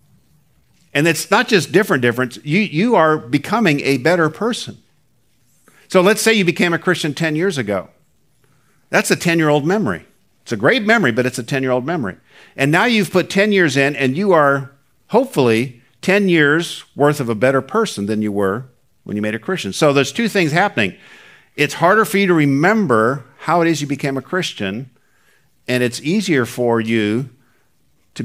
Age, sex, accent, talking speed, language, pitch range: 50-69, male, American, 185 wpm, English, 120-180 Hz